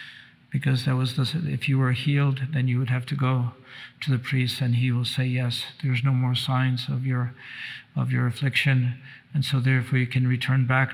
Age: 50-69